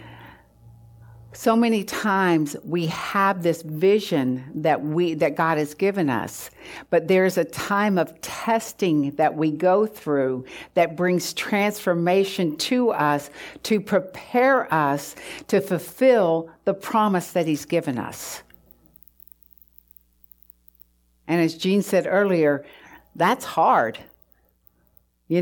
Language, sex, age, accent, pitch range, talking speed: English, female, 60-79, American, 150-195 Hz, 115 wpm